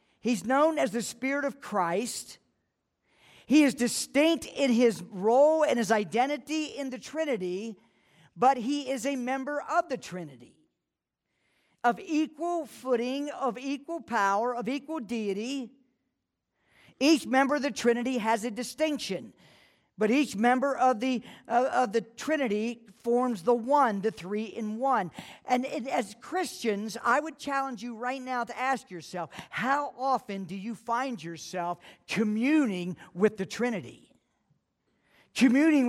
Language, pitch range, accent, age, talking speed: English, 200-270 Hz, American, 50-69, 140 wpm